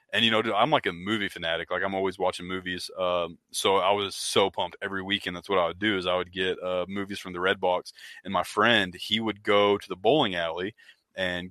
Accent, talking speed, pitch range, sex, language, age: American, 245 wpm, 95-105 Hz, male, English, 20-39